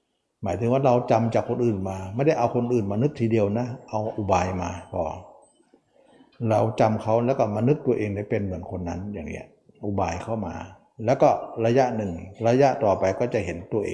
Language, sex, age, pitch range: Thai, male, 60-79, 100-135 Hz